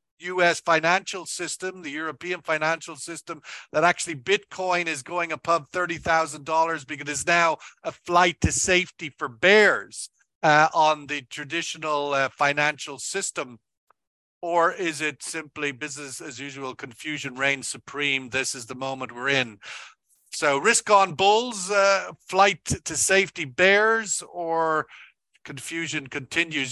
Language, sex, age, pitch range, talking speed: English, male, 50-69, 150-175 Hz, 135 wpm